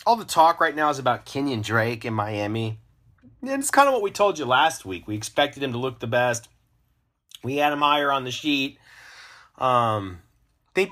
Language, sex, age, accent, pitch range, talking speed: English, male, 30-49, American, 115-140 Hz, 210 wpm